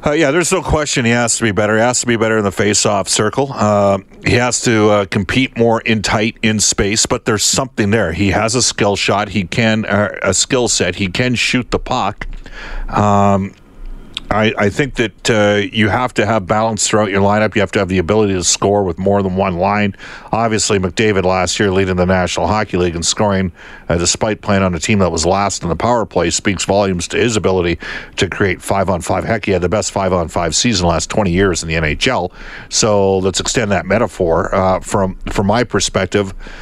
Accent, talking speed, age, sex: American, 215 wpm, 50-69, male